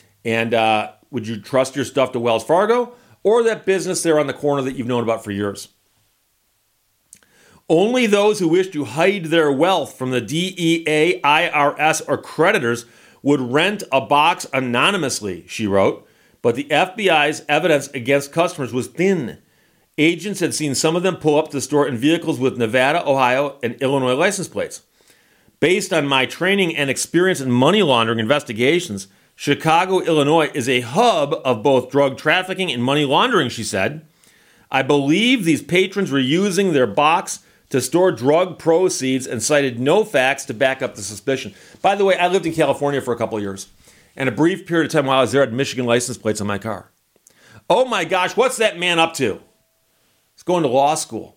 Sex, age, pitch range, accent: male, 40-59, 125-170 Hz, American